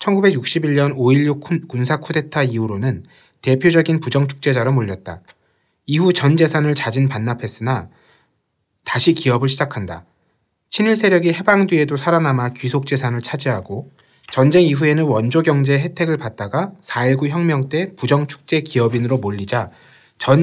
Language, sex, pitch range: Korean, male, 125-160 Hz